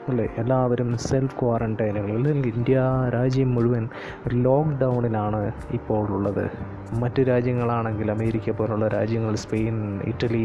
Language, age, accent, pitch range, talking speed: Malayalam, 20-39, native, 110-135 Hz, 105 wpm